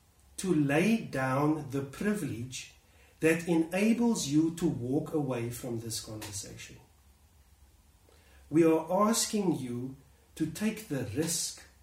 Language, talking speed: English, 110 wpm